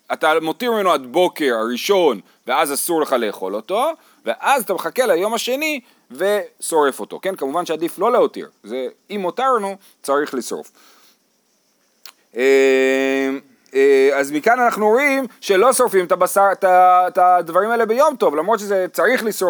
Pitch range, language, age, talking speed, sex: 160-230 Hz, Hebrew, 30-49, 110 wpm, male